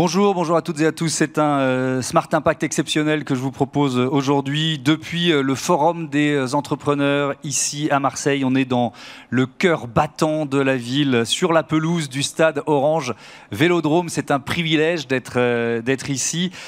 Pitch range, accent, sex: 125-155 Hz, French, male